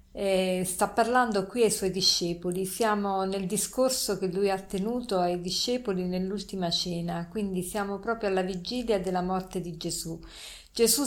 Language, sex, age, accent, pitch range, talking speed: Italian, female, 50-69, native, 185-220 Hz, 150 wpm